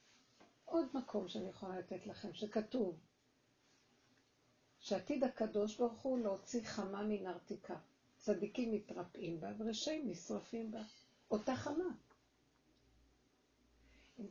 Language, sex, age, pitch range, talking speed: Hebrew, female, 50-69, 175-230 Hz, 95 wpm